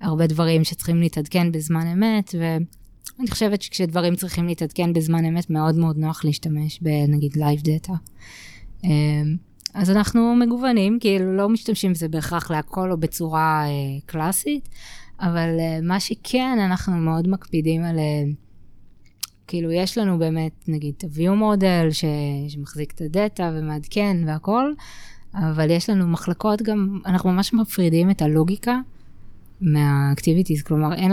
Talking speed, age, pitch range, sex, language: 125 wpm, 20-39, 150-190 Hz, female, Hebrew